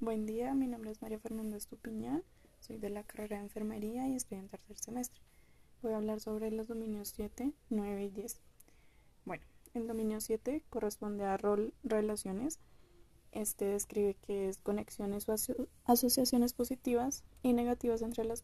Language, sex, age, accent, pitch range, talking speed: Spanish, female, 10-29, Colombian, 200-225 Hz, 165 wpm